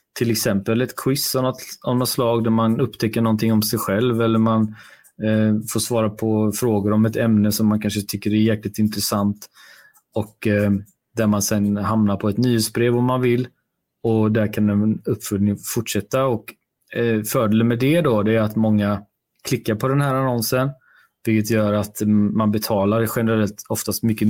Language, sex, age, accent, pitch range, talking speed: Swedish, male, 20-39, native, 105-115 Hz, 180 wpm